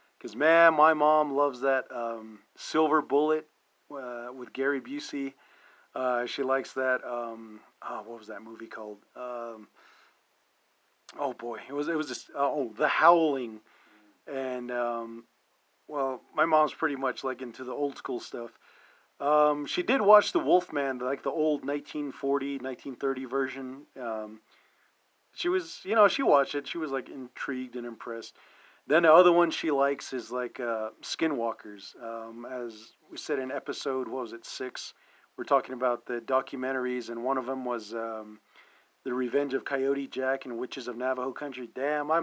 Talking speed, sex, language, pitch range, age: 165 wpm, male, English, 120-145 Hz, 40-59